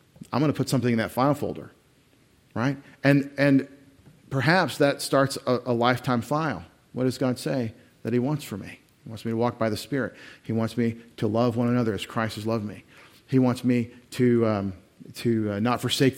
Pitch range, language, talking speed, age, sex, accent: 115-140 Hz, English, 210 wpm, 40-59, male, American